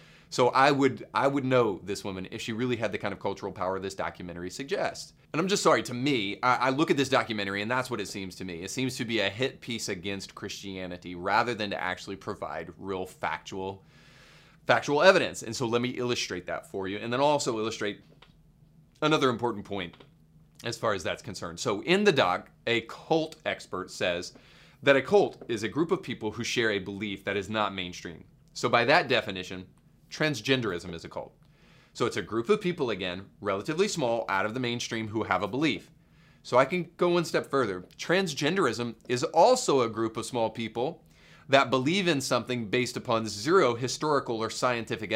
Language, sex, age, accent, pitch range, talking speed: English, male, 30-49, American, 100-140 Hz, 200 wpm